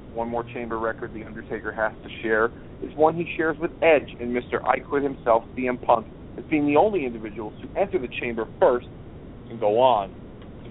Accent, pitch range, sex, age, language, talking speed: American, 115-140 Hz, male, 40-59, English, 195 wpm